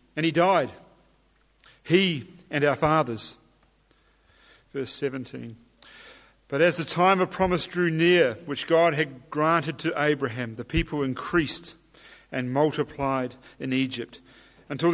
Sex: male